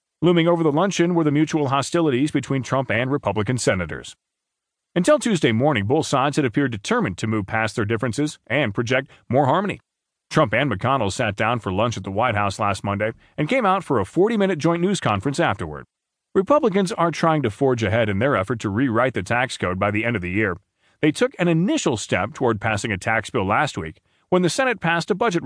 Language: English